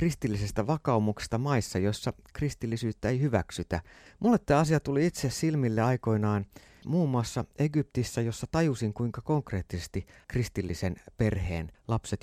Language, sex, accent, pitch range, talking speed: Finnish, male, native, 105-140 Hz, 120 wpm